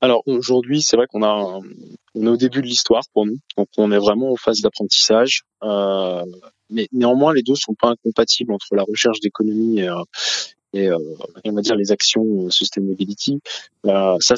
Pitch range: 100-120 Hz